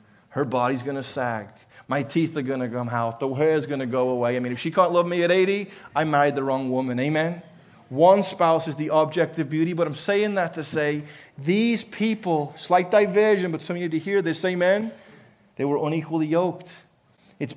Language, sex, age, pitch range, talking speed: English, male, 30-49, 140-180 Hz, 220 wpm